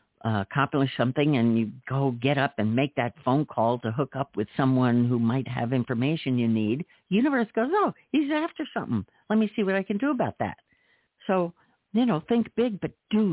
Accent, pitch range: American, 120-185 Hz